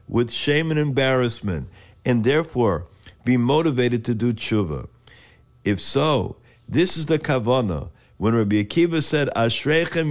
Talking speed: 130 wpm